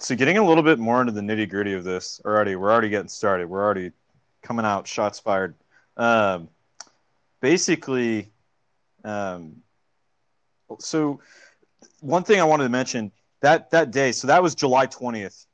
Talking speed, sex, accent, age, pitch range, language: 155 wpm, male, American, 30-49, 115-150 Hz, English